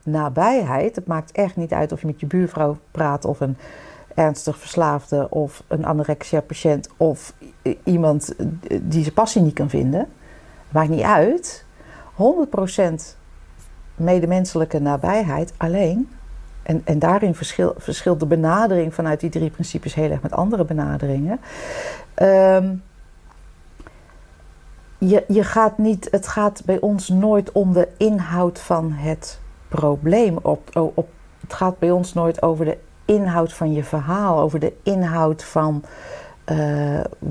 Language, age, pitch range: Dutch, 50-69, 155-185 Hz